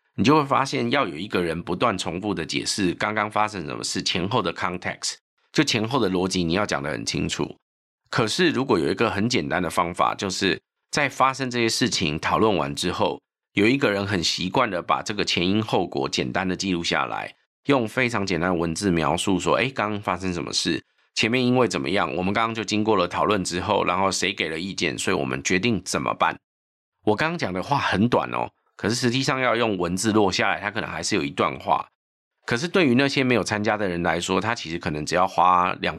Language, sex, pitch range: Chinese, male, 90-110 Hz